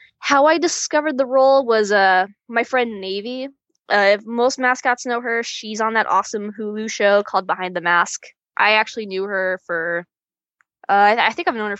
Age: 10-29